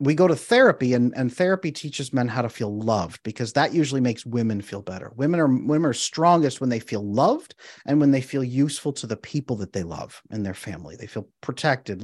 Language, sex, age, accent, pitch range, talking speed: English, male, 40-59, American, 110-135 Hz, 230 wpm